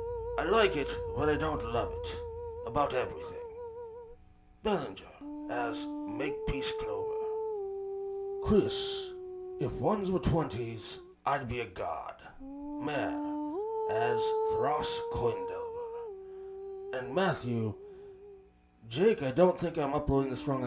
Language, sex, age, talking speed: English, male, 30-49, 105 wpm